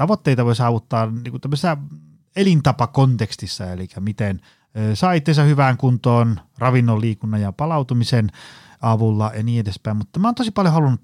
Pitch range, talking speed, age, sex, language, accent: 105-145 Hz, 135 wpm, 30-49, male, Finnish, native